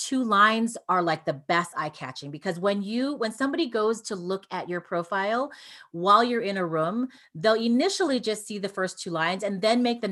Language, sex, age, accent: English, female, 30-49, American